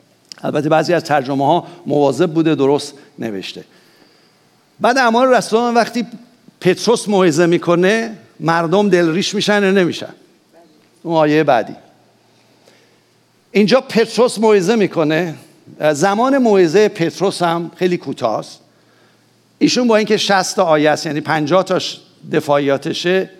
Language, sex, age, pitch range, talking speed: English, male, 50-69, 160-225 Hz, 115 wpm